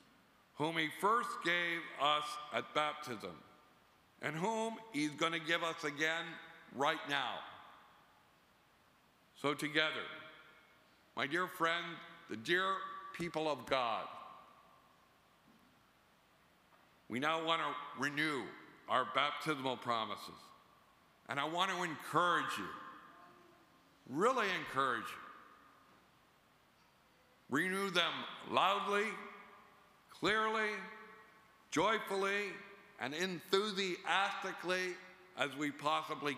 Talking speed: 85 wpm